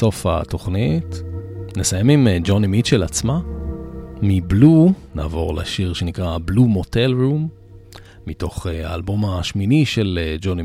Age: 40-59